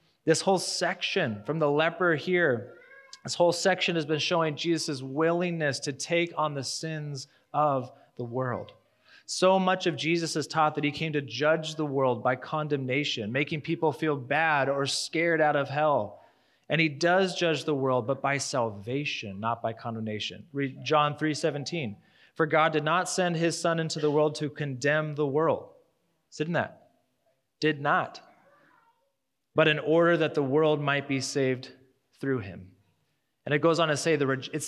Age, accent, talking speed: 30-49, American, 175 wpm